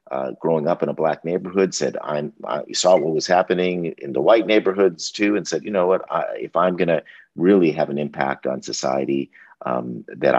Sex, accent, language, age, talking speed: male, American, English, 50-69, 215 wpm